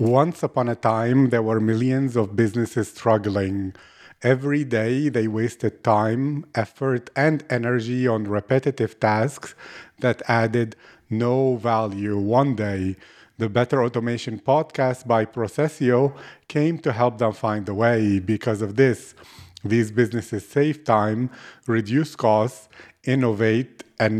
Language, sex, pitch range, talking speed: English, male, 110-130 Hz, 125 wpm